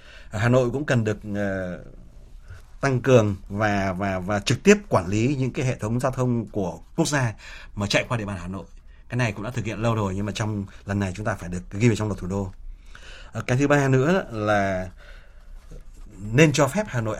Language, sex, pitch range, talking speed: Vietnamese, male, 100-135 Hz, 225 wpm